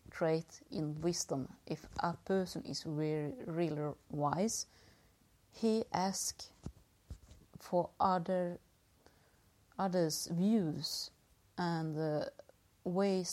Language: English